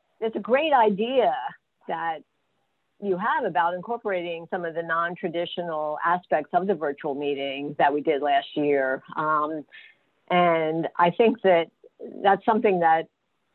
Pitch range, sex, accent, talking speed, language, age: 155-190 Hz, female, American, 135 wpm, English, 50-69